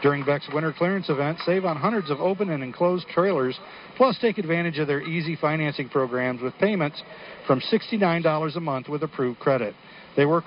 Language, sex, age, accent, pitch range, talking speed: English, male, 50-69, American, 135-175 Hz, 185 wpm